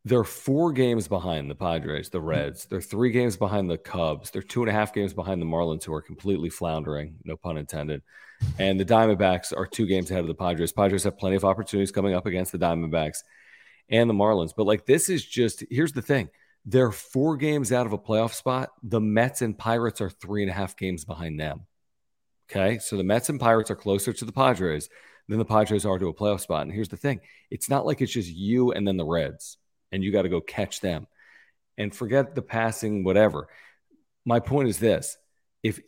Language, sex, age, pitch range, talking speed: English, male, 40-59, 90-115 Hz, 220 wpm